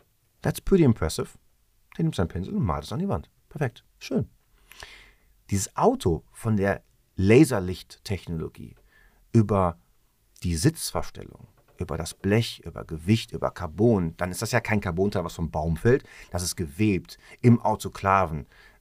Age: 40-59